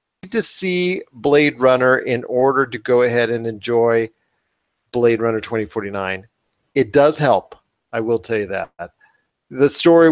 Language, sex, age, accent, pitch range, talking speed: English, male, 40-59, American, 115-135 Hz, 140 wpm